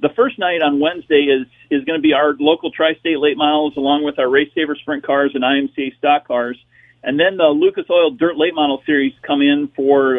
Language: English